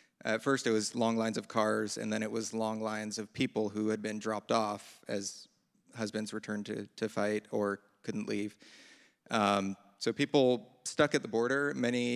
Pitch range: 105-120 Hz